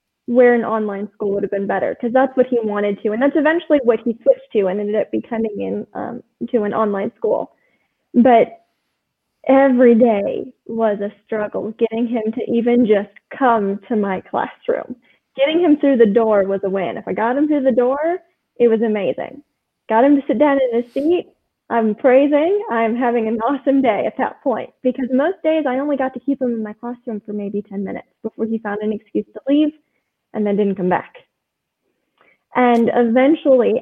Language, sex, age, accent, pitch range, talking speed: English, female, 10-29, American, 220-270 Hz, 200 wpm